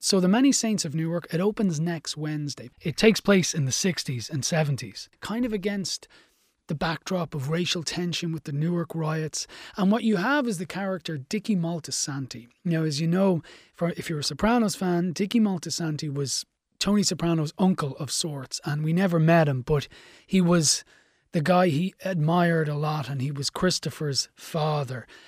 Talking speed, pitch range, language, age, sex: 180 wpm, 150-190 Hz, English, 30-49, male